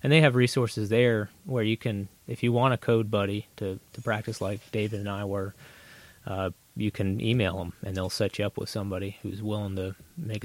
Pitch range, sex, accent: 100-115 Hz, male, American